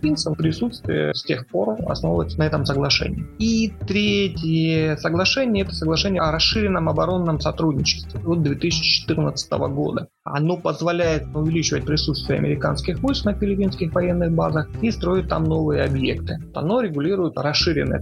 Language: Russian